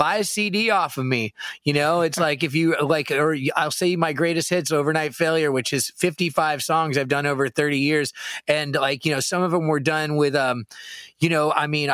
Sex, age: male, 30-49